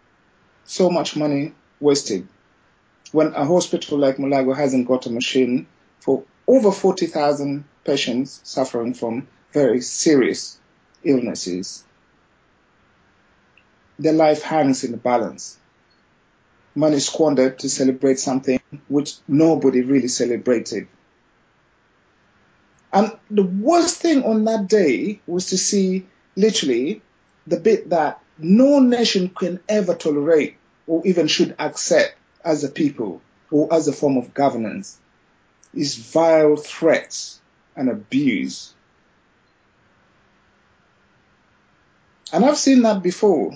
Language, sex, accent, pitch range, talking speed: English, male, Nigerian, 135-200 Hz, 110 wpm